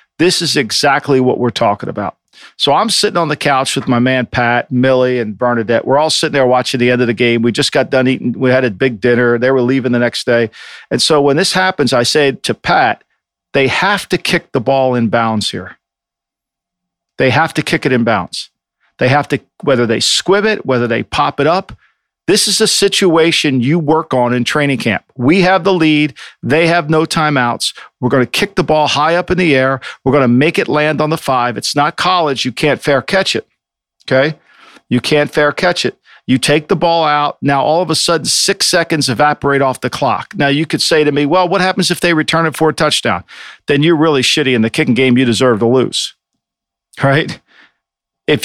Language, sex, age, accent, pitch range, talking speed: English, male, 50-69, American, 125-165 Hz, 225 wpm